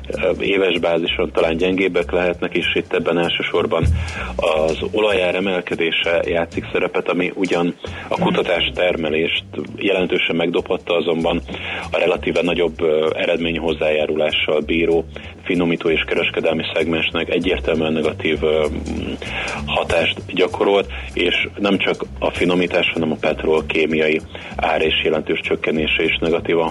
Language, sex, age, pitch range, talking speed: Hungarian, male, 30-49, 80-85 Hz, 115 wpm